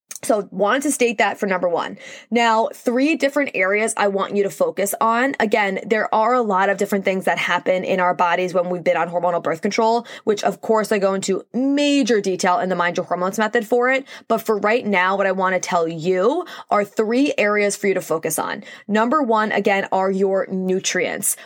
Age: 20-39